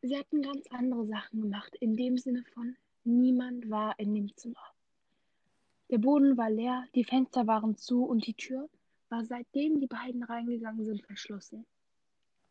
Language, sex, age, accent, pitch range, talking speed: German, female, 10-29, German, 225-260 Hz, 160 wpm